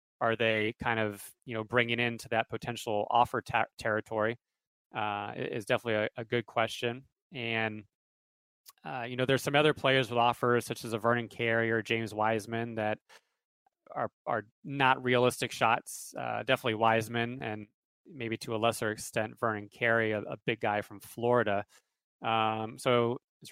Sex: male